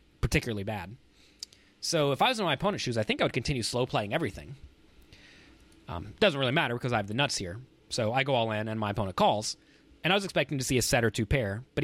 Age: 30-49